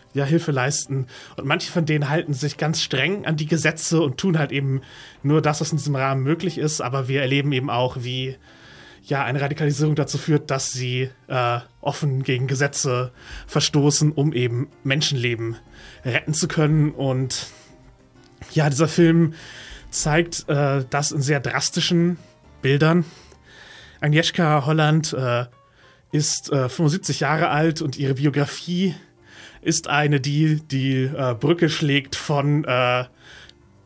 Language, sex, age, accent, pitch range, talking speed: German, male, 30-49, German, 130-150 Hz, 140 wpm